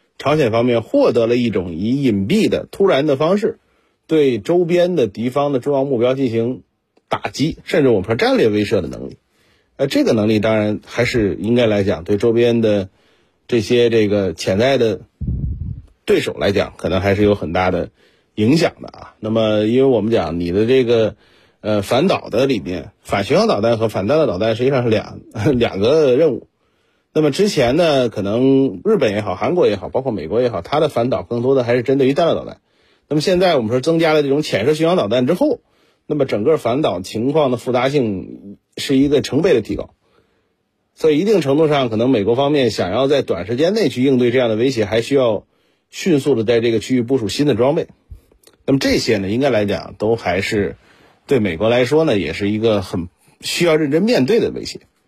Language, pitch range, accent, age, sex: Chinese, 105-140 Hz, native, 30-49, male